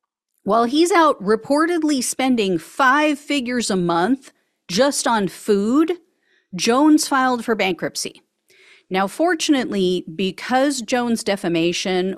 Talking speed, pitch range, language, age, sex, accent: 105 wpm, 175-260 Hz, English, 40-59, female, American